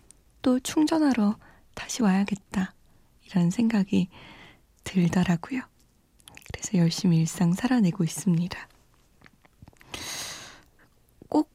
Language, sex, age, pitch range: Korean, female, 20-39, 175-235 Hz